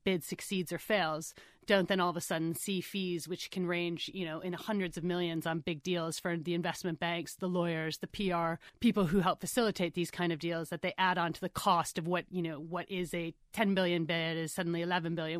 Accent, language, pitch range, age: American, English, 165-190 Hz, 30-49